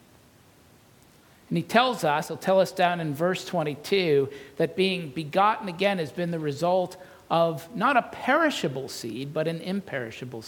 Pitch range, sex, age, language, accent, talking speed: 140-180 Hz, male, 50-69, English, American, 155 wpm